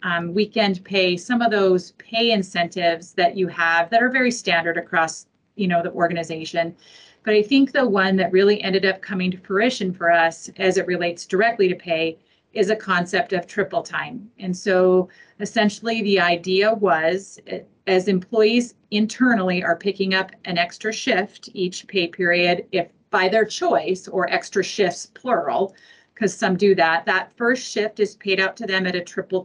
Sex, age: female, 40-59